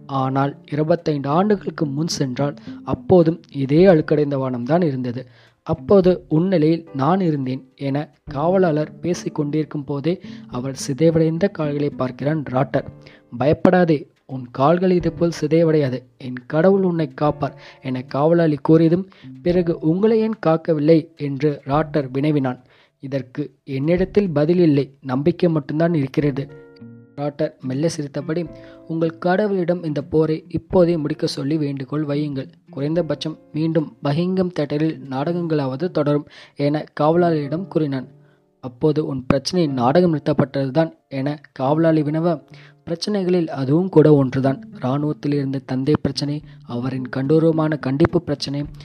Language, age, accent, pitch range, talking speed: Tamil, 20-39, native, 140-165 Hz, 110 wpm